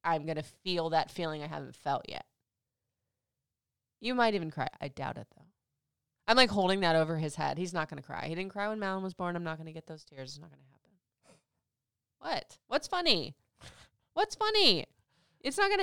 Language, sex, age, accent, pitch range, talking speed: English, female, 20-39, American, 160-235 Hz, 215 wpm